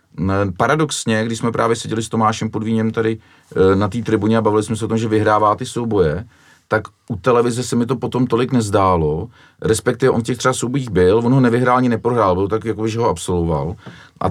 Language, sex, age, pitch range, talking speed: Czech, male, 40-59, 95-115 Hz, 205 wpm